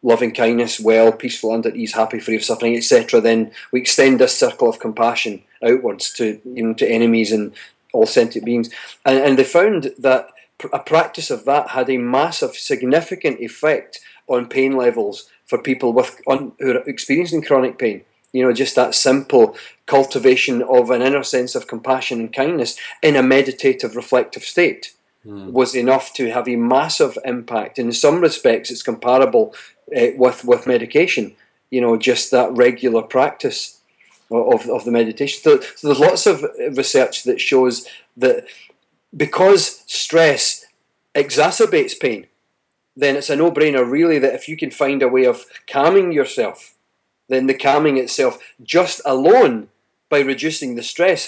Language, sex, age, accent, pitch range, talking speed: English, male, 40-59, British, 120-170 Hz, 160 wpm